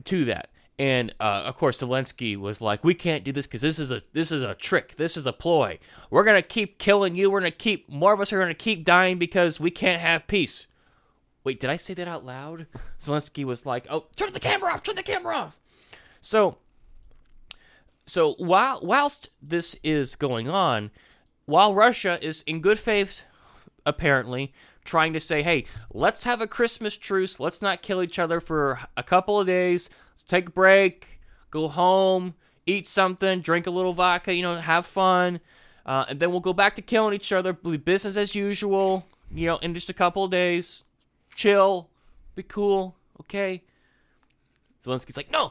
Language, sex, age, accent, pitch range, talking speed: English, male, 20-39, American, 145-190 Hz, 190 wpm